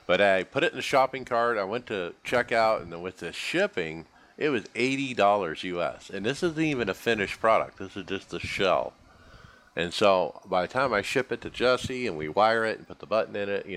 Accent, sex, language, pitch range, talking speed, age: American, male, English, 95-120 Hz, 240 wpm, 50-69